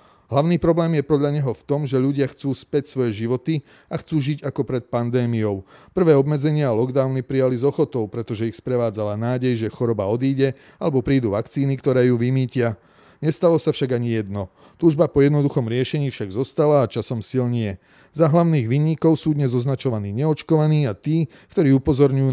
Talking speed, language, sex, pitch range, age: 170 wpm, Slovak, male, 115-145 Hz, 30-49